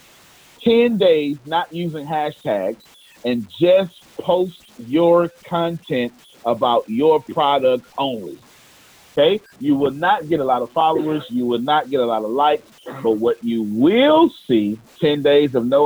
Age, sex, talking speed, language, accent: 40-59, male, 150 wpm, English, American